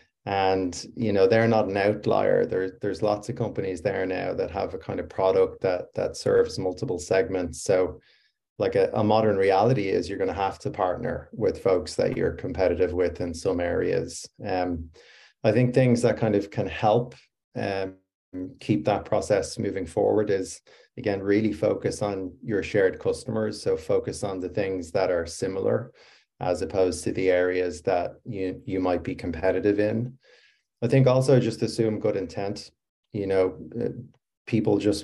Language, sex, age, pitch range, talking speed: English, male, 30-49, 95-125 Hz, 170 wpm